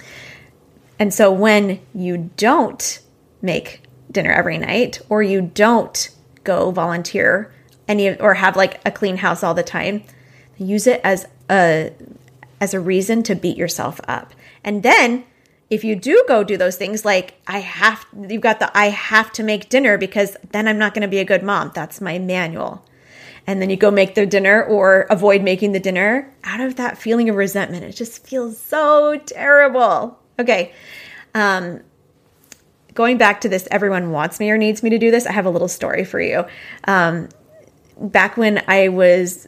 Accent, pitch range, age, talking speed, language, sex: American, 180-220 Hz, 20-39, 180 wpm, English, female